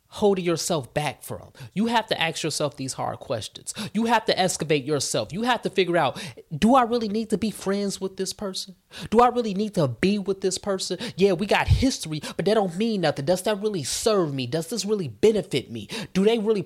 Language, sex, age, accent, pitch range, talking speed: English, male, 20-39, American, 155-205 Hz, 225 wpm